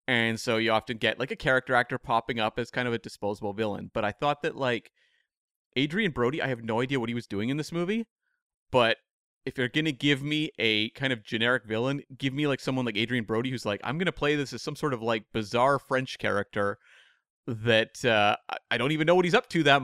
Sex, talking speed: male, 240 wpm